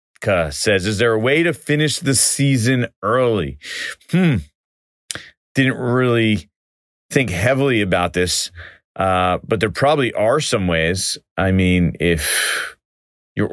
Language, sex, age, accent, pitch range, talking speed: English, male, 30-49, American, 85-120 Hz, 125 wpm